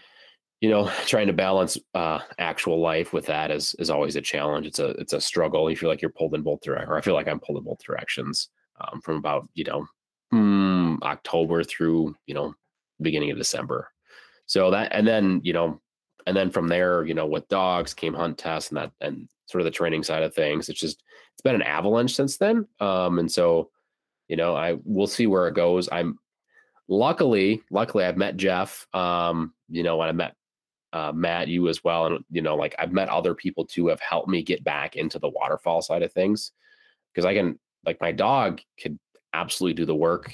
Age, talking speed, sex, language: 30-49, 215 wpm, male, English